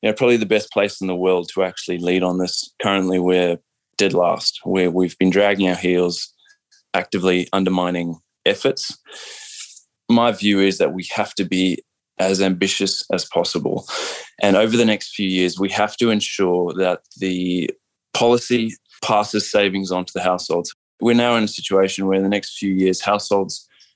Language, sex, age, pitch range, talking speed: English, male, 20-39, 90-100 Hz, 175 wpm